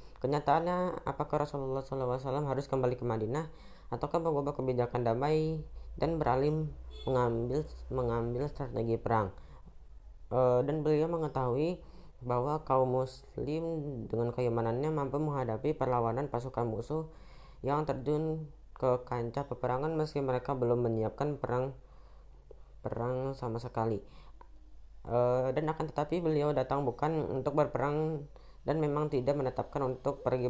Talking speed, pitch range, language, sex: 120 wpm, 120-150 Hz, Indonesian, female